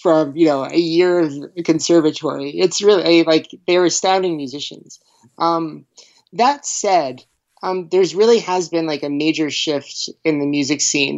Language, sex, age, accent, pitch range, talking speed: English, male, 20-39, American, 140-175 Hz, 160 wpm